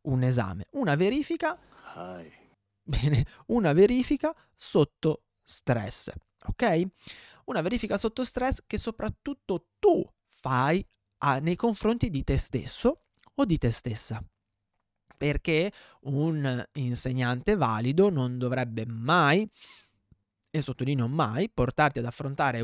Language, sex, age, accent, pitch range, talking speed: Italian, male, 30-49, native, 125-160 Hz, 105 wpm